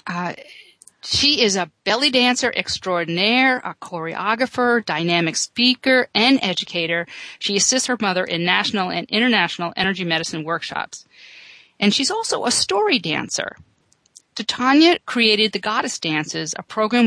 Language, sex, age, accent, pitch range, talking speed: English, female, 50-69, American, 180-250 Hz, 125 wpm